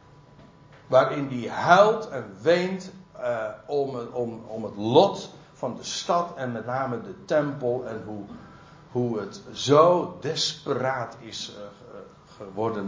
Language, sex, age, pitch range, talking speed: Dutch, male, 60-79, 125-160 Hz, 130 wpm